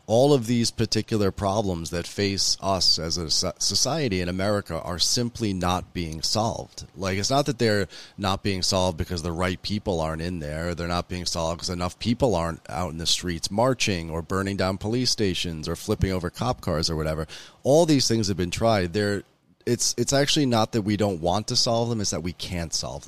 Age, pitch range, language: 30-49, 85-110 Hz, English